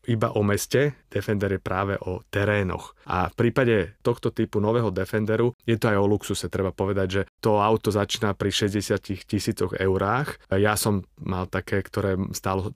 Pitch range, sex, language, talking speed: 100-115 Hz, male, Slovak, 170 wpm